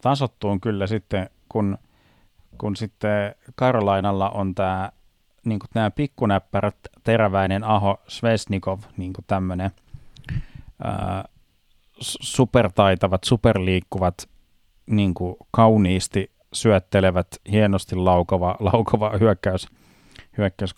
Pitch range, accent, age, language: 95-115 Hz, native, 30-49, Finnish